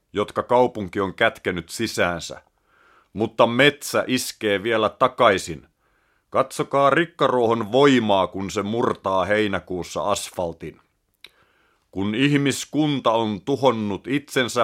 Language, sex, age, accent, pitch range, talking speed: Finnish, male, 30-49, native, 105-135 Hz, 95 wpm